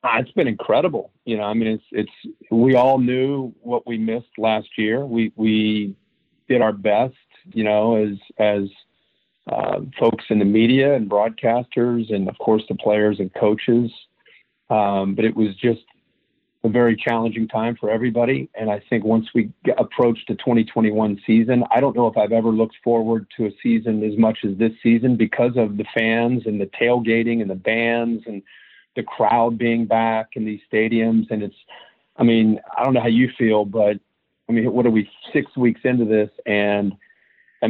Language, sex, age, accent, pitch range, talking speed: English, male, 50-69, American, 110-120 Hz, 185 wpm